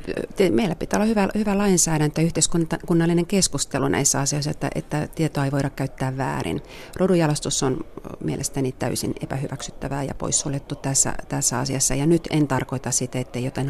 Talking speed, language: 155 wpm, Finnish